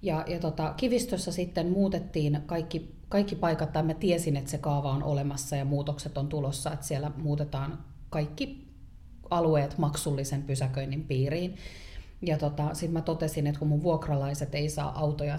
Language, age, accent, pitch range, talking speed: Finnish, 30-49, native, 145-165 Hz, 155 wpm